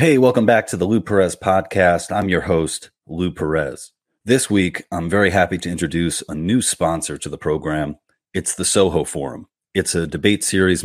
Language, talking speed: English, 190 wpm